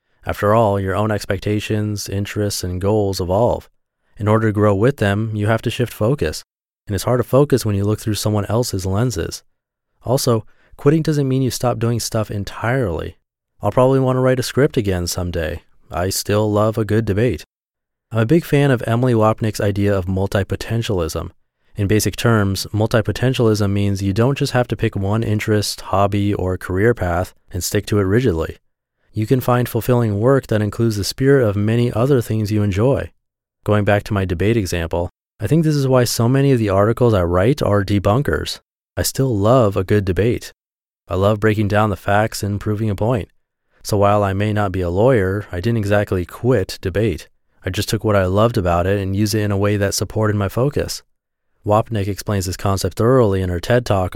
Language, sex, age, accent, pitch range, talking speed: English, male, 30-49, American, 100-120 Hz, 200 wpm